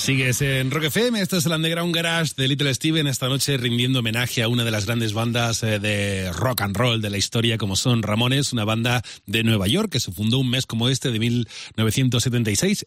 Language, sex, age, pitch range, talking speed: Spanish, male, 30-49, 100-130 Hz, 215 wpm